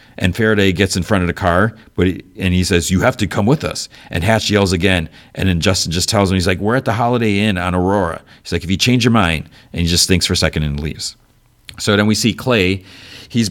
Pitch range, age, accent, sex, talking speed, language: 85-105 Hz, 40-59, American, male, 265 wpm, English